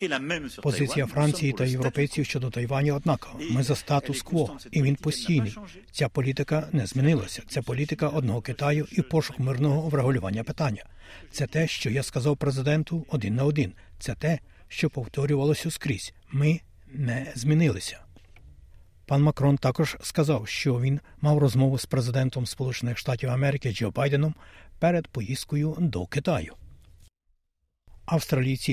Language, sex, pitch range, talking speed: Ukrainian, male, 120-150 Hz, 130 wpm